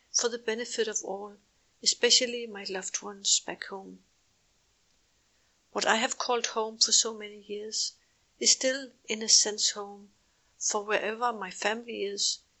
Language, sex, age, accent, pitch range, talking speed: English, female, 60-79, Danish, 190-225 Hz, 150 wpm